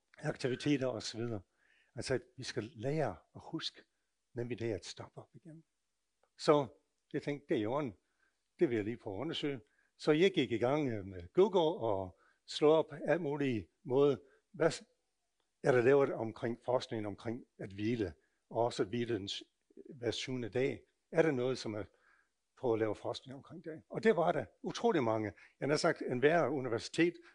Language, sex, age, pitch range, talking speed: Danish, male, 60-79, 115-145 Hz, 180 wpm